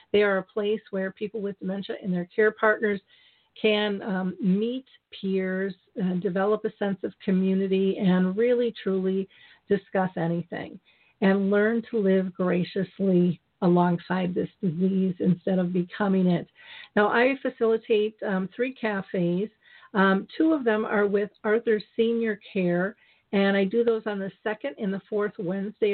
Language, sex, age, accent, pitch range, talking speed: English, female, 50-69, American, 185-215 Hz, 150 wpm